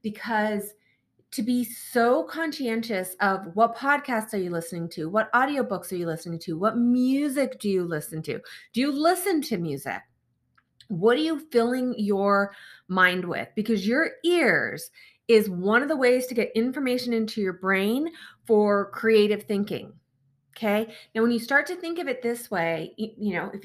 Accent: American